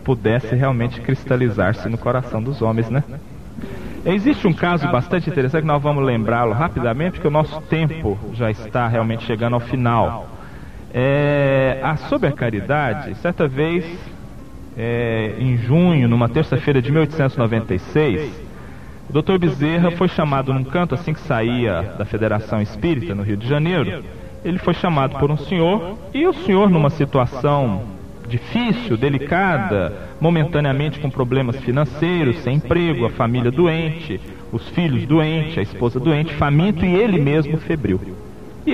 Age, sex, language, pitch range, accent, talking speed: 40-59, male, Portuguese, 120-165 Hz, Brazilian, 140 wpm